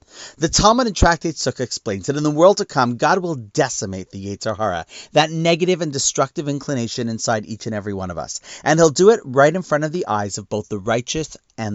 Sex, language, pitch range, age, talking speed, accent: male, English, 120-180 Hz, 40-59, 225 wpm, American